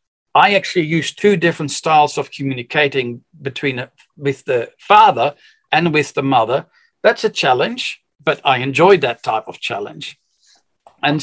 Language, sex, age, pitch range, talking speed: English, male, 60-79, 140-185 Hz, 150 wpm